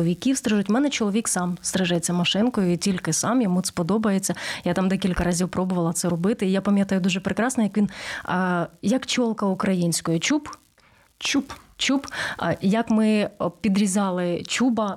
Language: Ukrainian